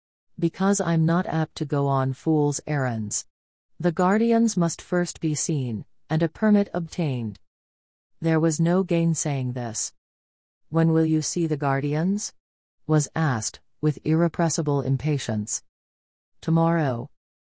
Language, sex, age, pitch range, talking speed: English, female, 40-59, 130-160 Hz, 125 wpm